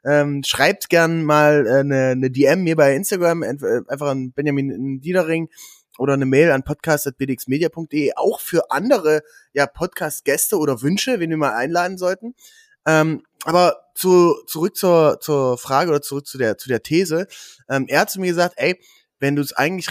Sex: male